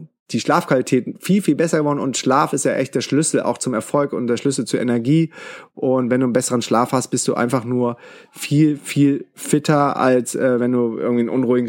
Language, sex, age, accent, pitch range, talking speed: German, male, 30-49, German, 130-165 Hz, 215 wpm